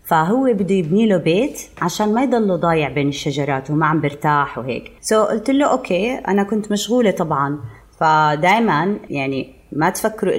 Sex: female